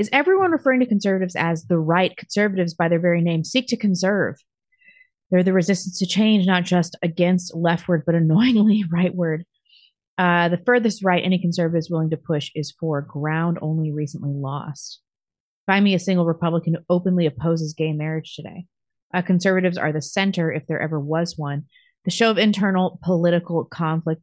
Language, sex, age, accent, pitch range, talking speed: English, female, 30-49, American, 155-190 Hz, 175 wpm